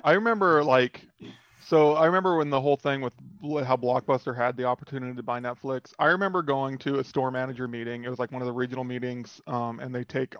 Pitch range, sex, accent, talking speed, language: 125-145 Hz, male, American, 225 wpm, English